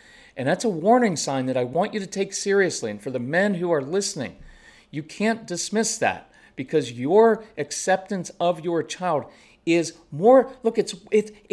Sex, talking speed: male, 175 wpm